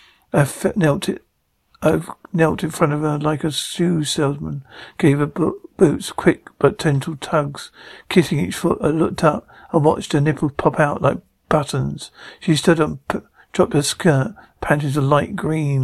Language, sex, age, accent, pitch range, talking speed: English, male, 50-69, British, 140-165 Hz, 170 wpm